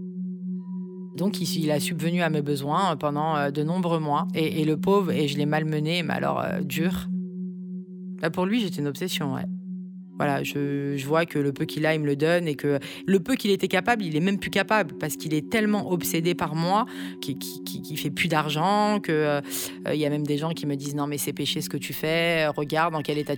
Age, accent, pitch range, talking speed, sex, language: 30-49, French, 150-185 Hz, 235 wpm, female, French